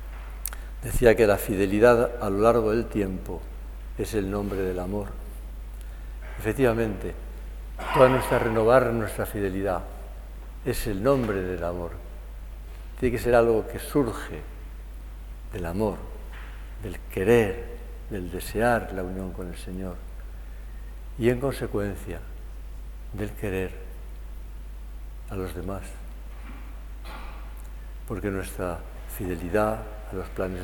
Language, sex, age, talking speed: Spanish, male, 60-79, 110 wpm